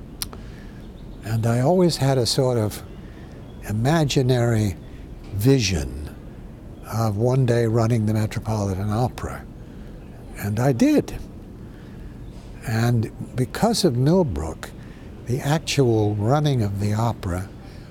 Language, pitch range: English, 100-125 Hz